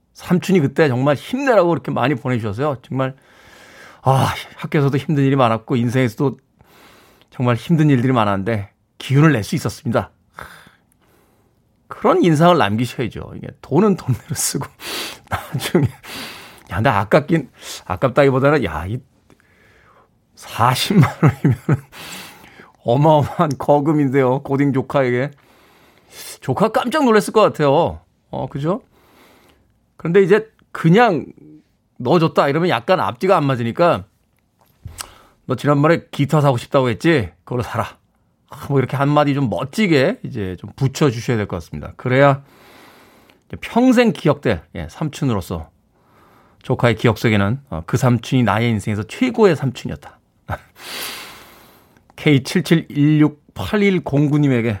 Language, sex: Korean, male